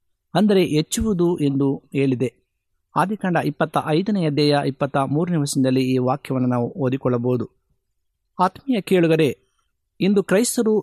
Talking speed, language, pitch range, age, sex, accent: 95 wpm, Kannada, 140-185 Hz, 50-69, male, native